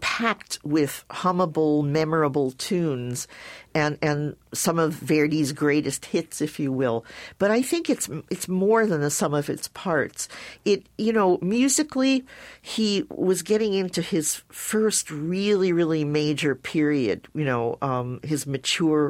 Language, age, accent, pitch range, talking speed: English, 50-69, American, 140-185 Hz, 145 wpm